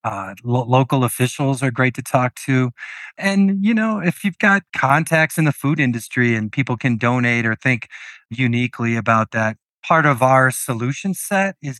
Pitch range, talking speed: 115-140 Hz, 180 wpm